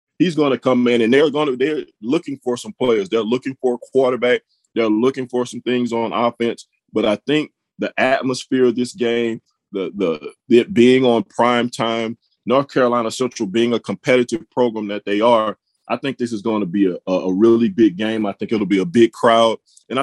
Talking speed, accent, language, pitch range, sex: 205 wpm, American, English, 105-125 Hz, male